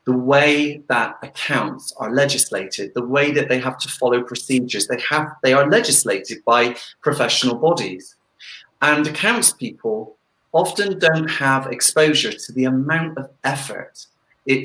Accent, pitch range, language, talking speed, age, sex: British, 125-155 Hz, English, 145 wpm, 40-59, male